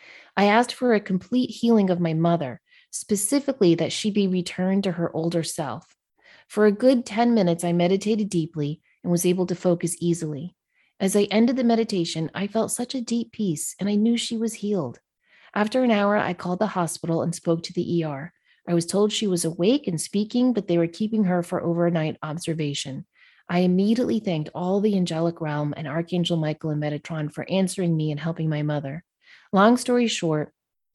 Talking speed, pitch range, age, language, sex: 190 wpm, 165-200 Hz, 30-49, English, female